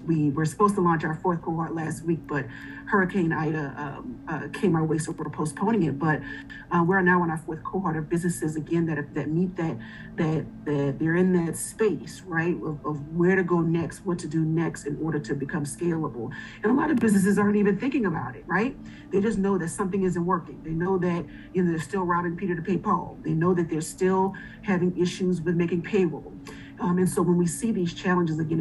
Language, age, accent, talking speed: English, 40-59, American, 225 wpm